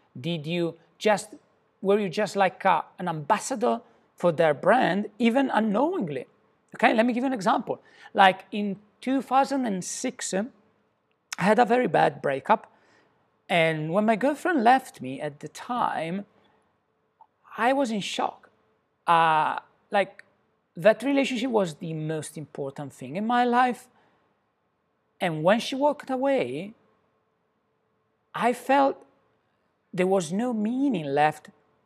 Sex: male